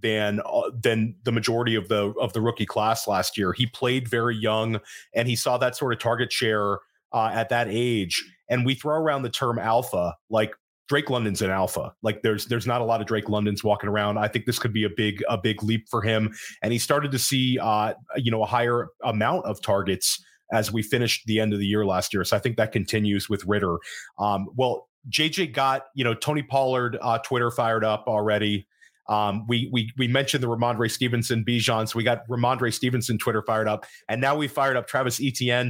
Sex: male